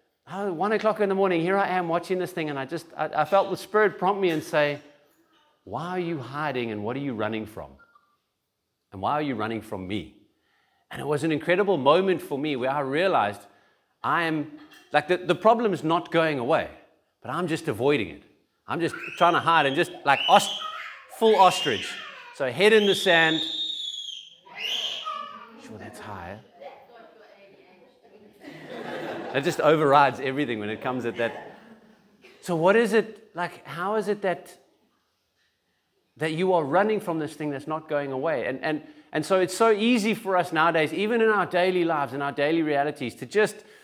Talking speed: 185 wpm